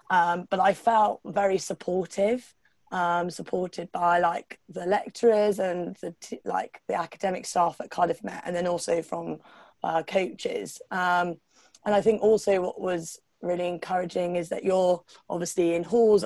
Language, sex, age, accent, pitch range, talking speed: English, female, 20-39, British, 175-195 Hz, 150 wpm